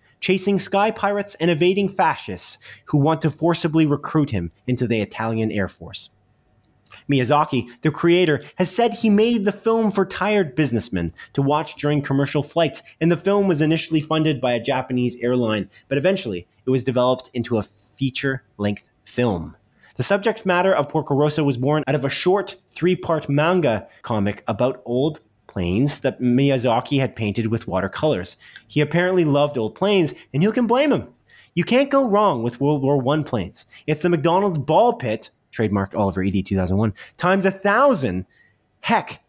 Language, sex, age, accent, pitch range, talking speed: English, male, 30-49, American, 115-180 Hz, 165 wpm